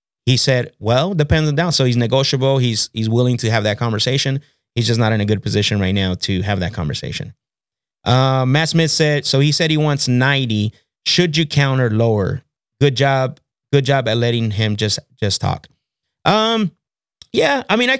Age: 30-49